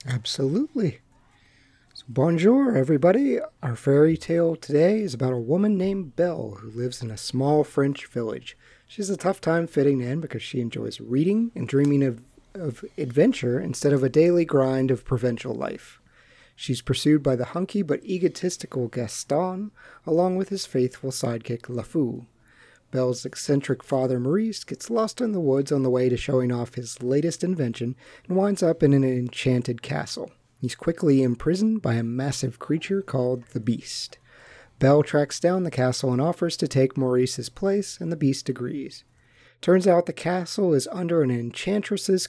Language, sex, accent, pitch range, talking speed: English, male, American, 125-170 Hz, 165 wpm